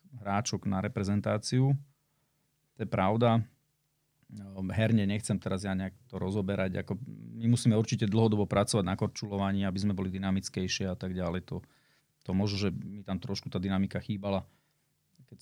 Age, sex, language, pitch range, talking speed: 40-59, male, Slovak, 100-115 Hz, 150 wpm